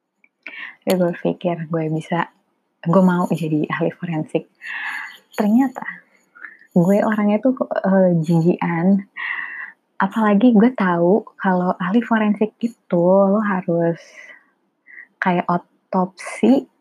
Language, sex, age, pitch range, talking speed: Indonesian, female, 20-39, 175-215 Hz, 95 wpm